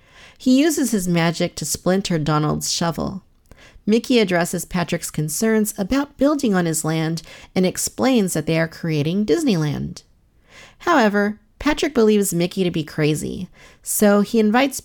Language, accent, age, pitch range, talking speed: English, American, 40-59, 160-215 Hz, 135 wpm